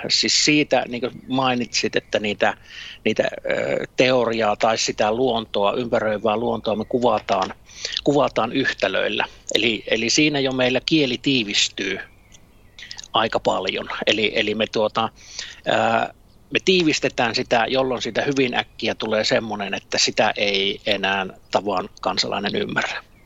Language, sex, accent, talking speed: Finnish, male, native, 120 wpm